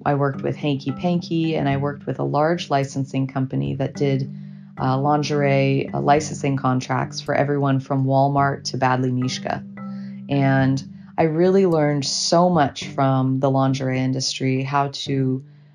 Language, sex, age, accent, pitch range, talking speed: English, female, 30-49, American, 130-150 Hz, 150 wpm